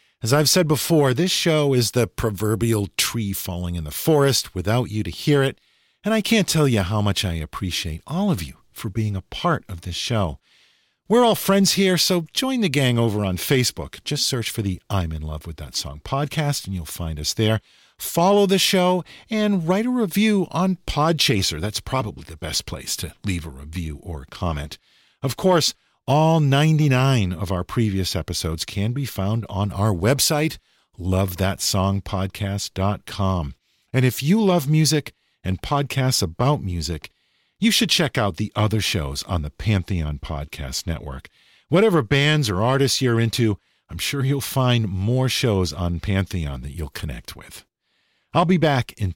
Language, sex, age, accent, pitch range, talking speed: English, male, 50-69, American, 95-145 Hz, 175 wpm